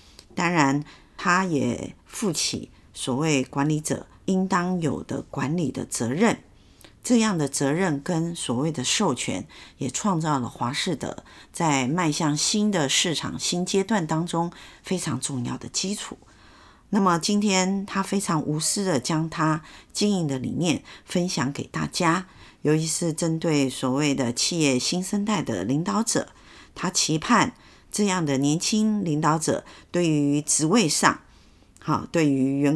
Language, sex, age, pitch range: Chinese, female, 50-69, 140-185 Hz